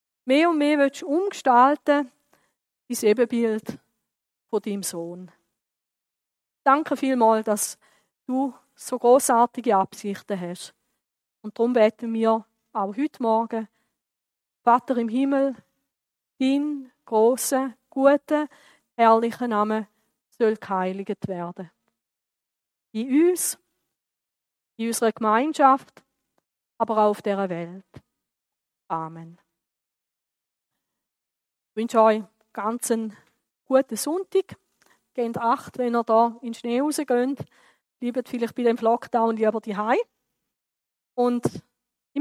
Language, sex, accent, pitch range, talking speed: German, female, Swiss, 215-260 Hz, 105 wpm